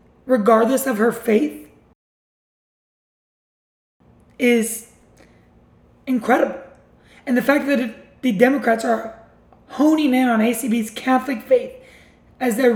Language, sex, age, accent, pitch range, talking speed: English, male, 20-39, American, 230-265 Hz, 100 wpm